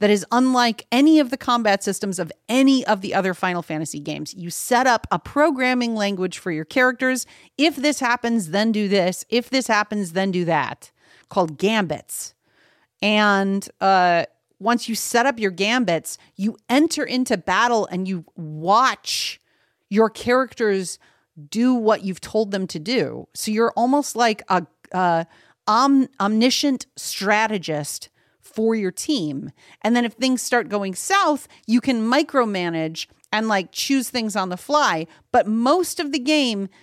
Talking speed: 160 wpm